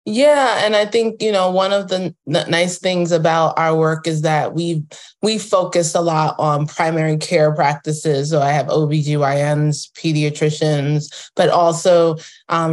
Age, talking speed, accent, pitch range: 20-39, 155 wpm, American, 150-170 Hz